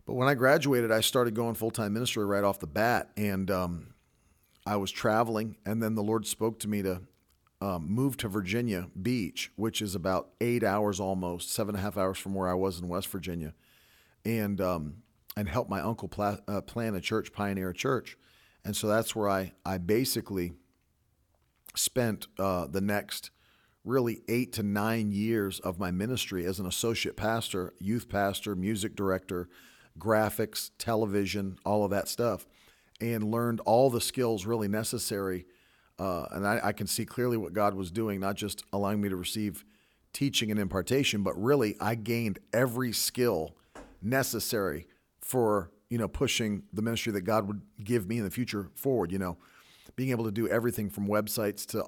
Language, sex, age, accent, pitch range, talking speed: English, male, 40-59, American, 95-115 Hz, 180 wpm